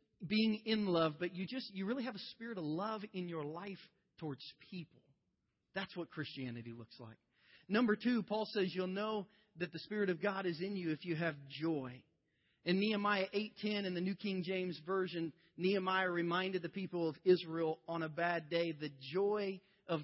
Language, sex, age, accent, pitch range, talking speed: English, male, 40-59, American, 160-210 Hz, 190 wpm